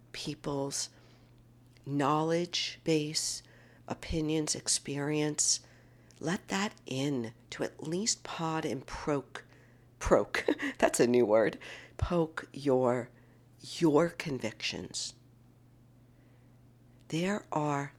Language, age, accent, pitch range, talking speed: English, 50-69, American, 120-145 Hz, 85 wpm